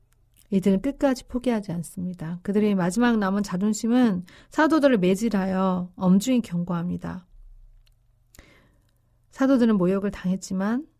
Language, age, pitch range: Korean, 40-59, 180-235 Hz